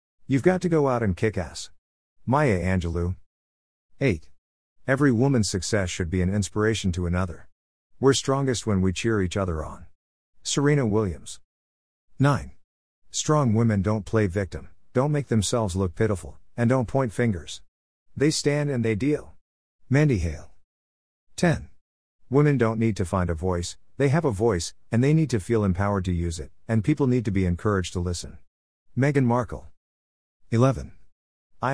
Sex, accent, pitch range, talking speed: male, American, 80-125 Hz, 160 wpm